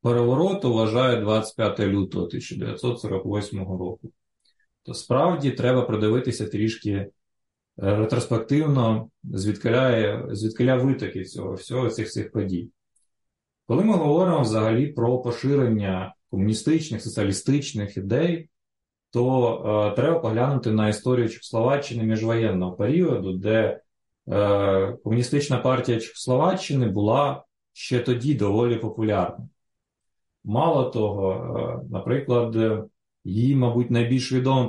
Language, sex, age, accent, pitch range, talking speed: Ukrainian, male, 20-39, native, 105-135 Hz, 95 wpm